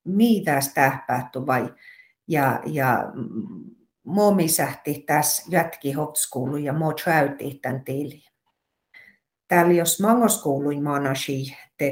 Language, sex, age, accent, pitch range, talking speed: Finnish, female, 50-69, native, 140-180 Hz, 80 wpm